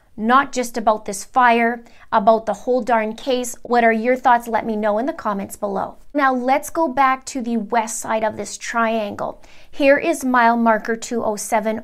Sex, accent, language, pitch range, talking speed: female, American, English, 225-250 Hz, 190 wpm